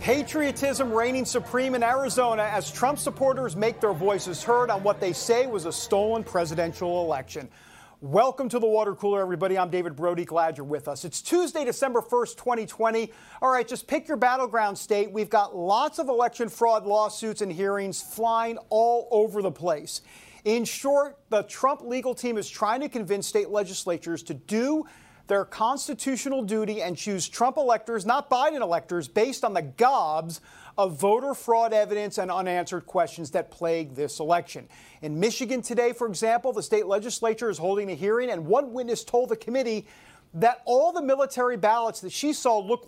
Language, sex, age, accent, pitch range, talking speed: English, male, 40-59, American, 185-240 Hz, 175 wpm